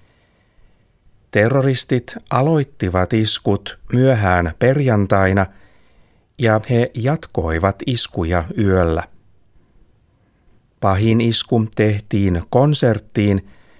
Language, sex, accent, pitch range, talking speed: Finnish, male, native, 95-120 Hz, 60 wpm